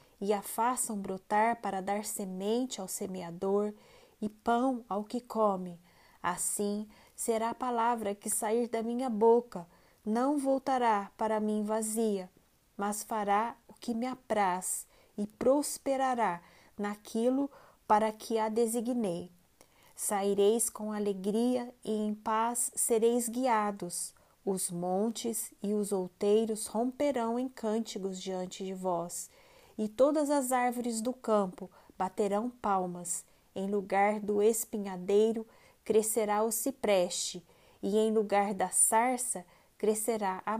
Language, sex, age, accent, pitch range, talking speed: Portuguese, female, 20-39, Brazilian, 200-235 Hz, 120 wpm